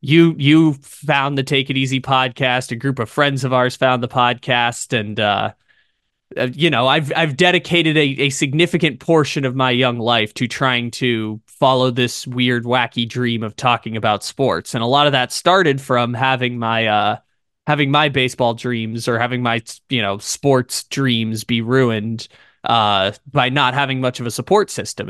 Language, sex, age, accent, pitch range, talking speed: English, male, 20-39, American, 115-140 Hz, 180 wpm